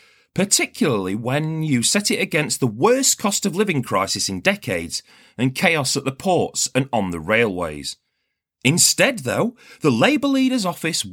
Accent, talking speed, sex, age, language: British, 145 wpm, male, 40-59, English